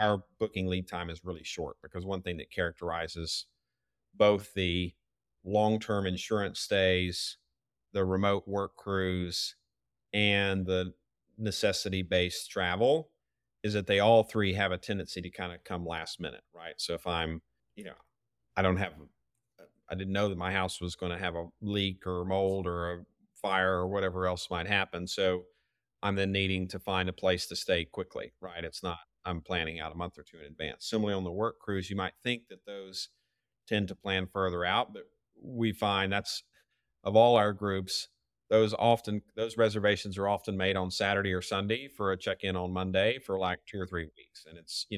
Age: 40-59